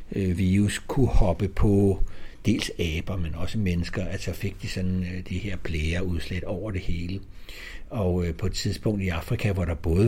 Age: 60-79